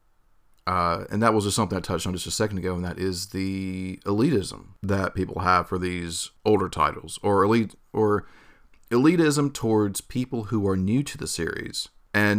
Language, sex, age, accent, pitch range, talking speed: English, male, 40-59, American, 90-110 Hz, 185 wpm